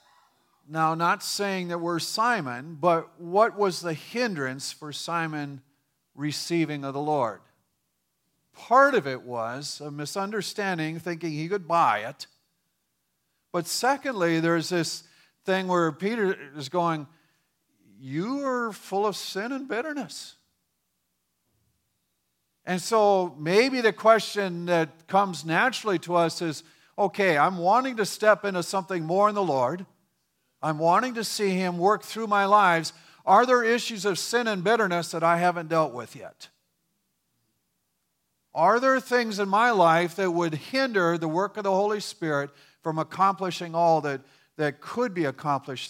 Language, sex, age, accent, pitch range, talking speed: English, male, 50-69, American, 150-205 Hz, 145 wpm